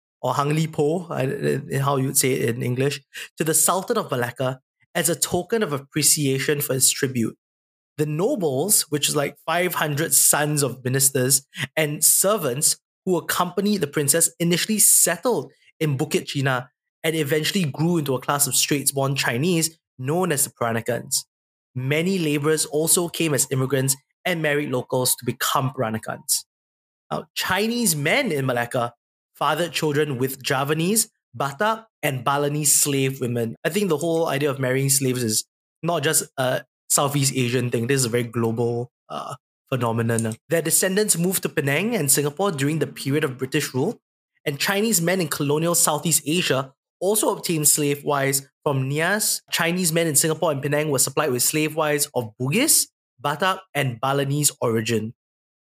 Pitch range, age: 130-165 Hz, 20-39